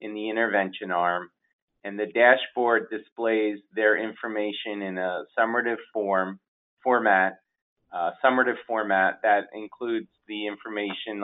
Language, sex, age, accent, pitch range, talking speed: English, male, 30-49, American, 95-115 Hz, 115 wpm